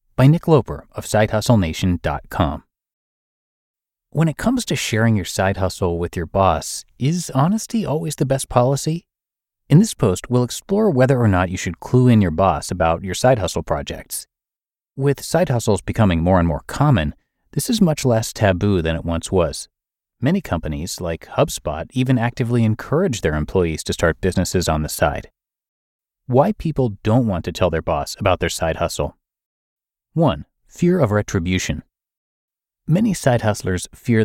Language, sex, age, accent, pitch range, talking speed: English, male, 30-49, American, 90-130 Hz, 165 wpm